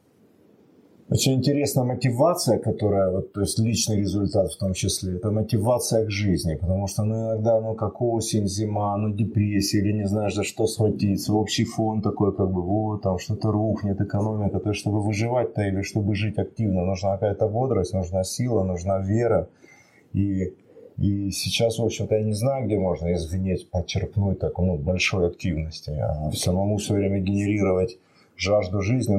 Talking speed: 165 wpm